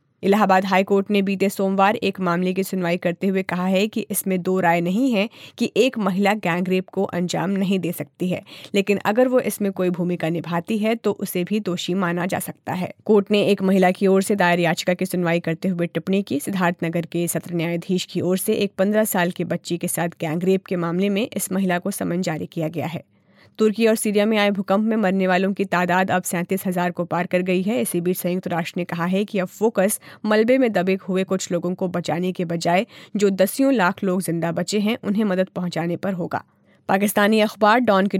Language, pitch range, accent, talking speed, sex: Hindi, 175-205 Hz, native, 225 wpm, female